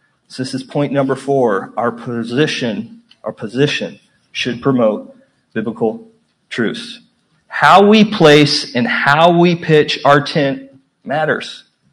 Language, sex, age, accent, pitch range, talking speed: English, male, 40-59, American, 135-175 Hz, 120 wpm